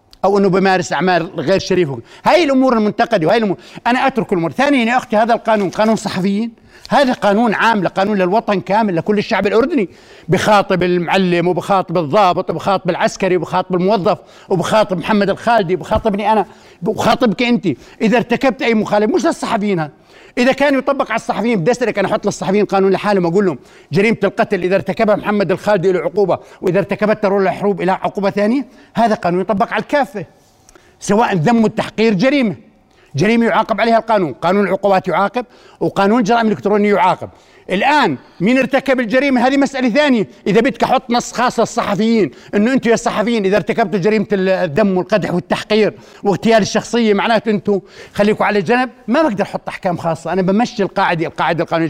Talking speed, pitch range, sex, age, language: 160 wpm, 190-230 Hz, male, 60-79, Arabic